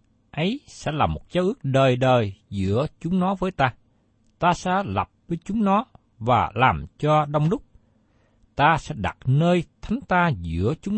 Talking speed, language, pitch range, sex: 175 wpm, Vietnamese, 110-175 Hz, male